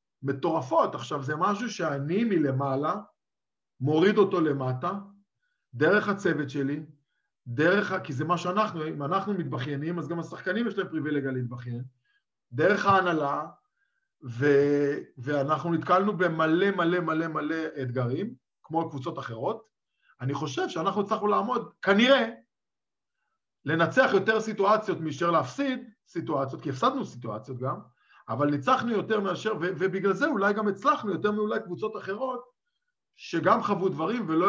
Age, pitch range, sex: 50-69, 150-215 Hz, male